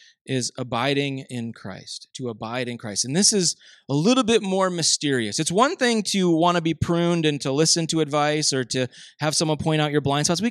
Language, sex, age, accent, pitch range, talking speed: English, male, 20-39, American, 145-195 Hz, 225 wpm